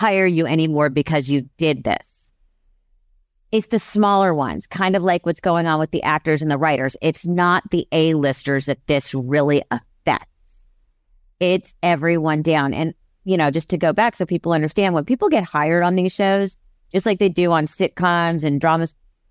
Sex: female